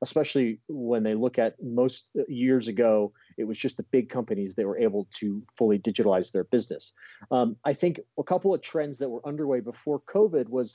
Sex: male